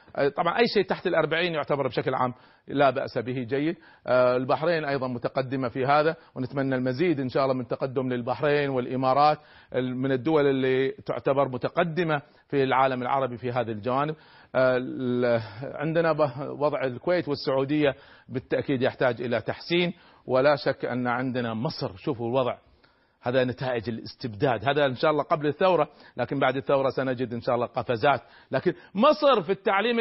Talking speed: 145 wpm